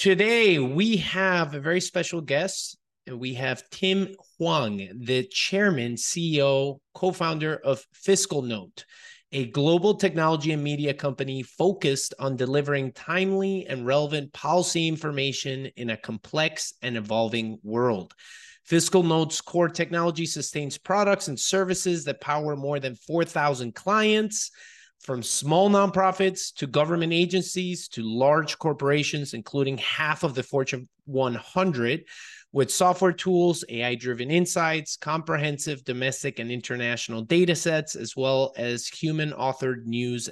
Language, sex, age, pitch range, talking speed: English, male, 30-49, 130-180 Hz, 120 wpm